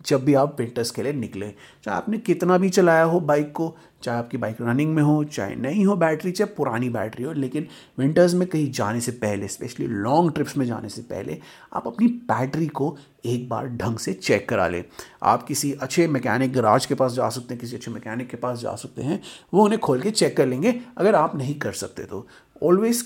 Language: Hindi